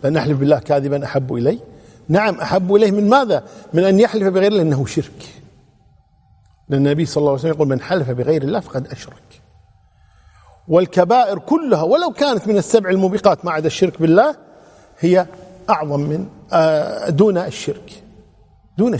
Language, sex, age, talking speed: Arabic, male, 50-69, 145 wpm